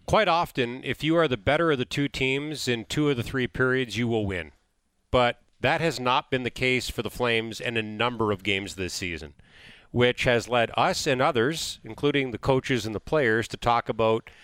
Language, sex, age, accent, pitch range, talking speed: English, male, 40-59, American, 115-150 Hz, 215 wpm